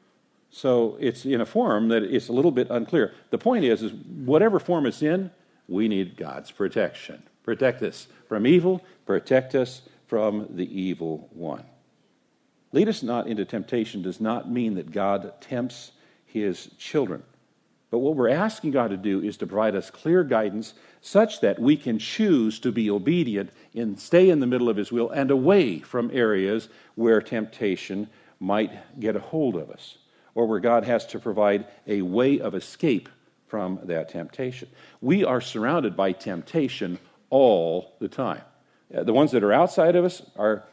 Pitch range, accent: 105-150 Hz, American